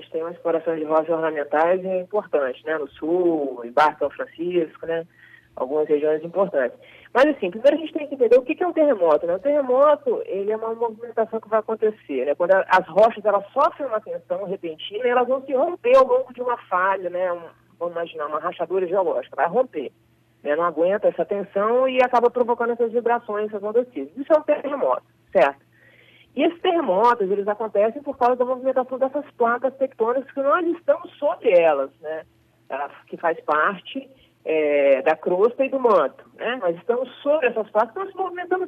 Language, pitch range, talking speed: Portuguese, 180-295 Hz, 190 wpm